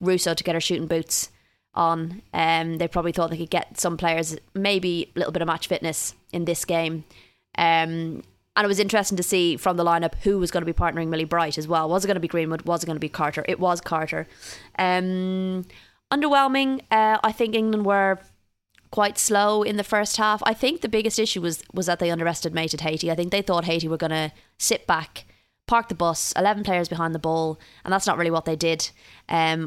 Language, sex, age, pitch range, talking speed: English, female, 20-39, 165-195 Hz, 225 wpm